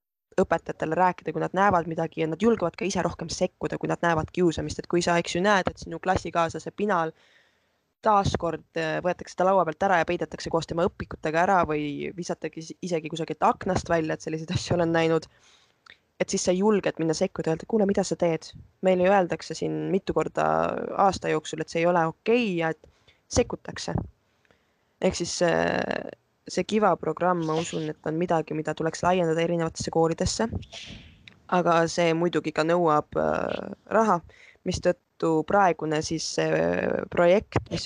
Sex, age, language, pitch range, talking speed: female, 20-39, English, 160-180 Hz, 170 wpm